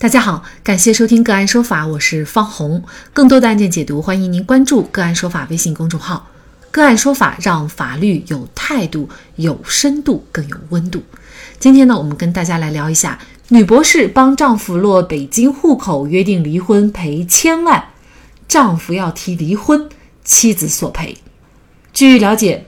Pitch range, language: 165-240 Hz, Chinese